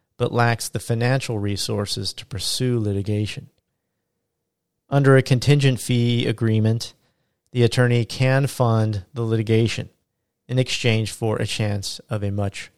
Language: English